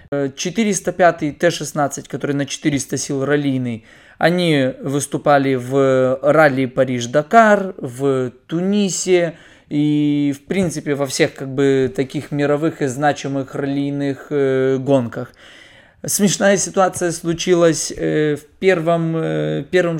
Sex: male